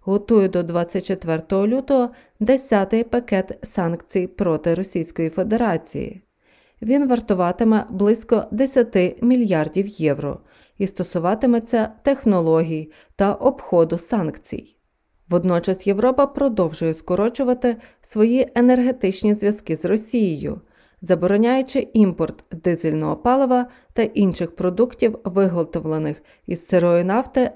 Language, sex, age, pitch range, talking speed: Ukrainian, female, 30-49, 180-235 Hz, 90 wpm